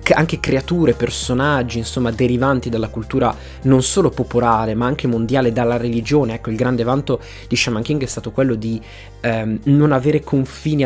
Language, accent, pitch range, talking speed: Italian, native, 115-130 Hz, 165 wpm